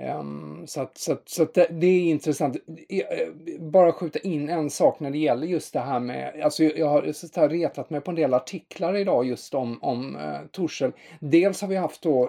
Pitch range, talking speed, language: 130-170 Hz, 210 wpm, Swedish